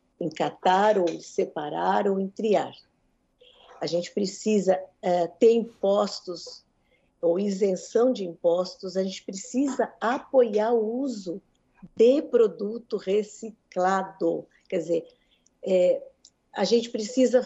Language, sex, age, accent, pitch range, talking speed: Portuguese, female, 50-69, Brazilian, 185-245 Hz, 115 wpm